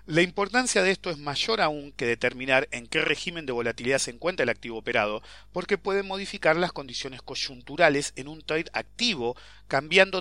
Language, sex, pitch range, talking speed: English, male, 115-175 Hz, 175 wpm